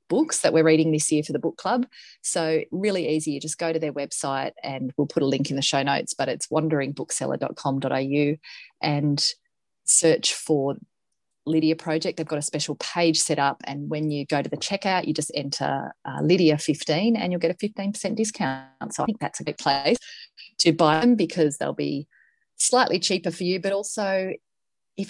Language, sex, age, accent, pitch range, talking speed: English, female, 30-49, Australian, 150-195 Hz, 195 wpm